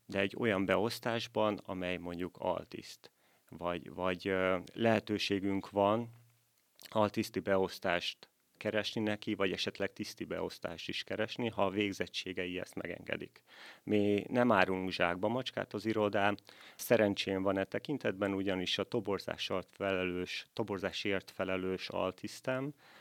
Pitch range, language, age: 90-110 Hz, Hungarian, 30-49